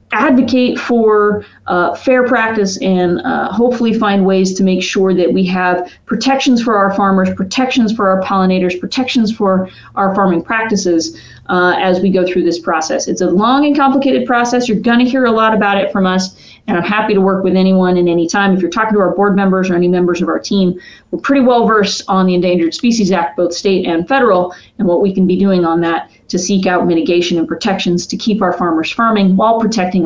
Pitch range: 180-225 Hz